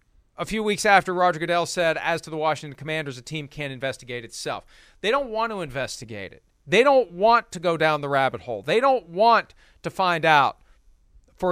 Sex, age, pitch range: male, 40-59, 155-225 Hz